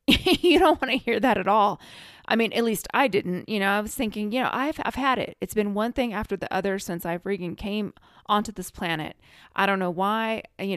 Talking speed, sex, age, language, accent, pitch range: 240 wpm, female, 20-39, English, American, 180-225 Hz